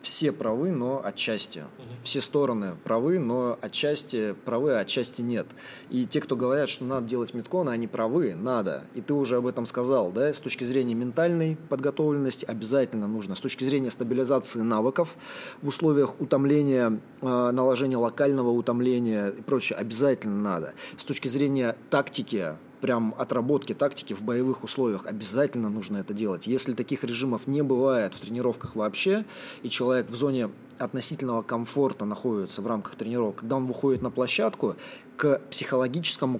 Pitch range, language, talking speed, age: 120-140 Hz, Russian, 150 wpm, 20-39